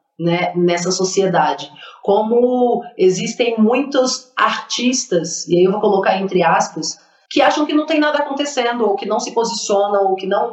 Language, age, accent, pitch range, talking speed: Portuguese, 40-59, Brazilian, 195-255 Hz, 160 wpm